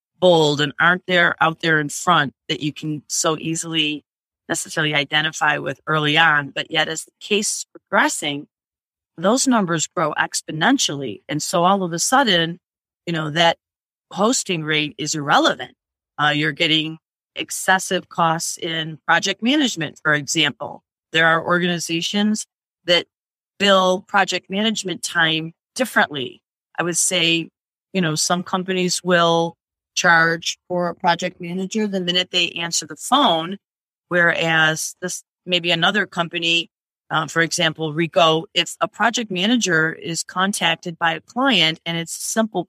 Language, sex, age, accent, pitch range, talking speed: English, female, 40-59, American, 160-190 Hz, 140 wpm